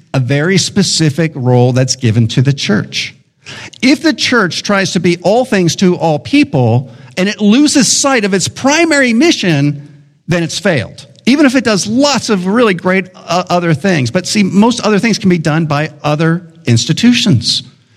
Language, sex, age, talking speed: English, male, 50-69, 175 wpm